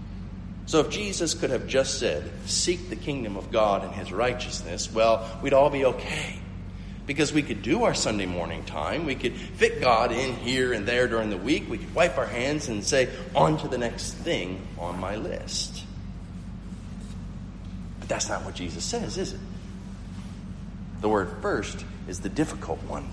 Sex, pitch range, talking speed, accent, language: male, 95-140 Hz, 180 wpm, American, English